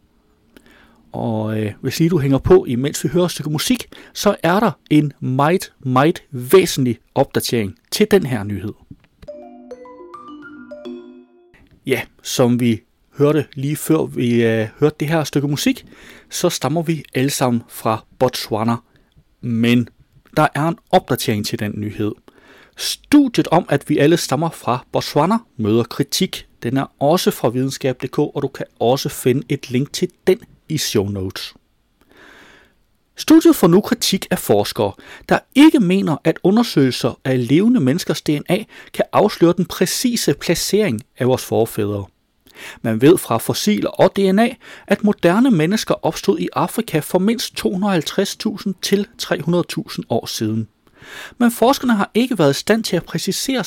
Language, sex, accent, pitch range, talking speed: Danish, male, native, 130-200 Hz, 150 wpm